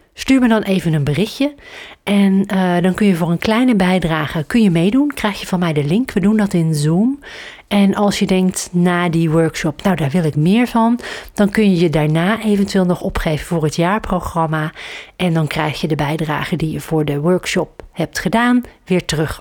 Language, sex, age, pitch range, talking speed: Dutch, female, 40-59, 160-205 Hz, 210 wpm